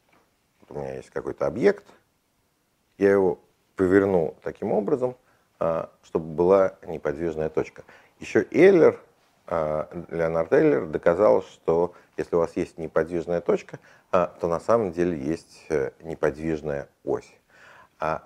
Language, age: Russian, 50-69